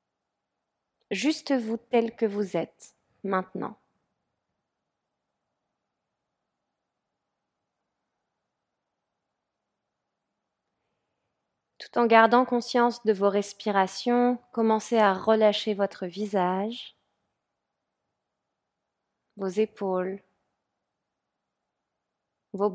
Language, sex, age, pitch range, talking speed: French, female, 30-49, 195-225 Hz, 60 wpm